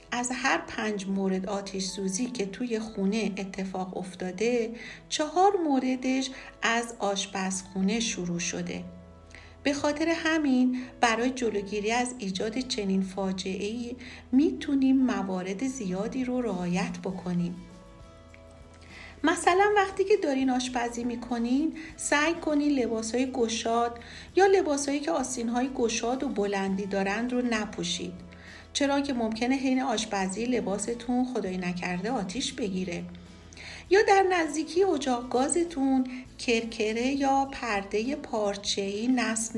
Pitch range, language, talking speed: 195-260 Hz, Persian, 110 wpm